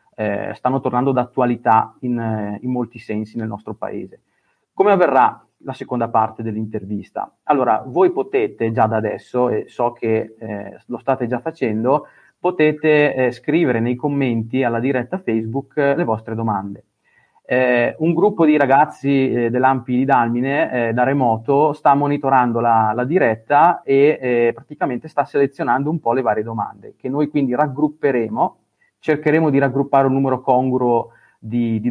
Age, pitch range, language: 30-49, 115-140 Hz, Italian